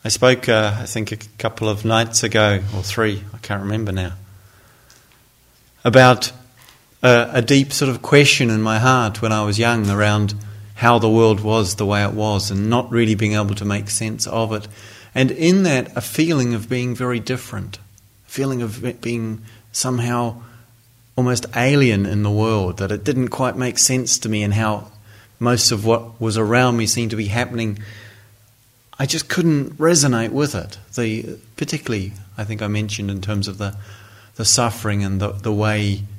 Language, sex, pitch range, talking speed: English, male, 105-125 Hz, 180 wpm